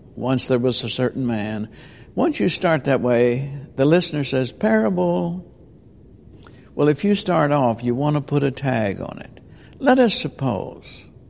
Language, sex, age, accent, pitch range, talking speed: English, male, 60-79, American, 115-140 Hz, 165 wpm